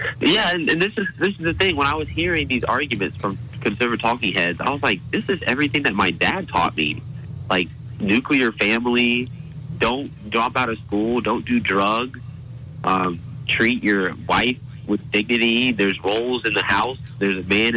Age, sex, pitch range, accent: 30-49, male, 105-130 Hz, American